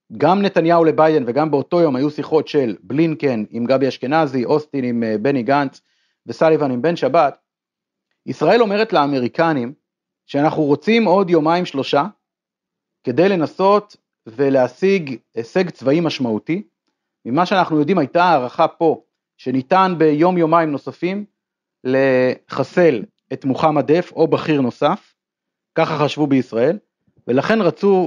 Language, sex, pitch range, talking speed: Hebrew, male, 135-185 Hz, 120 wpm